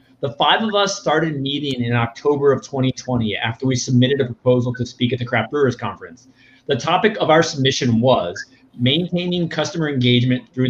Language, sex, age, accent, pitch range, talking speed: English, male, 30-49, American, 120-160 Hz, 180 wpm